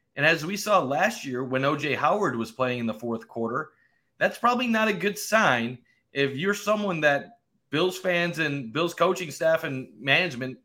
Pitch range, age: 130-160 Hz, 30-49